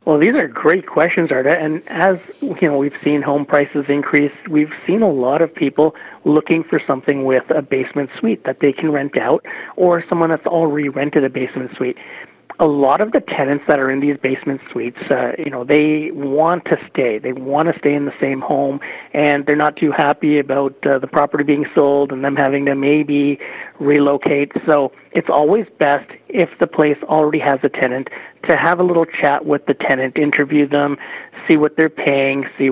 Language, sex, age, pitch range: English, male, 40-59, 135-155 Hz